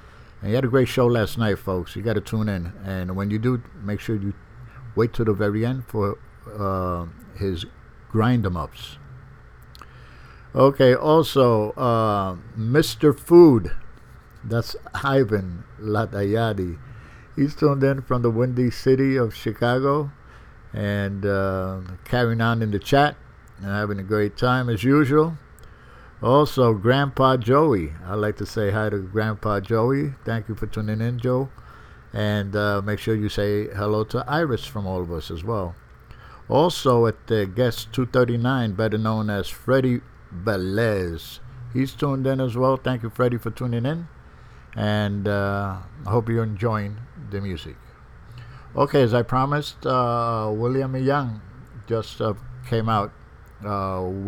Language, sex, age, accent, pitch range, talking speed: English, male, 60-79, American, 100-125 Hz, 150 wpm